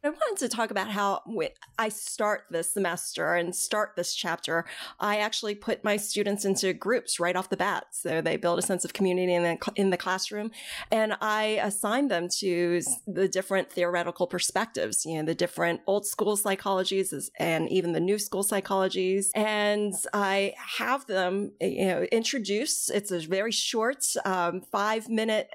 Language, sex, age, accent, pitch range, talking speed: English, female, 30-49, American, 175-210 Hz, 165 wpm